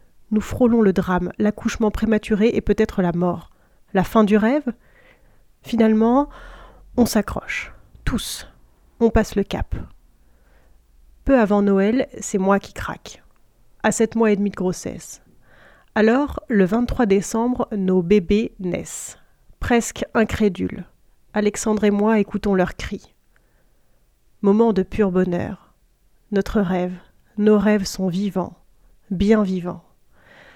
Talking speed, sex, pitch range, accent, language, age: 125 wpm, female, 180-220 Hz, French, French, 30-49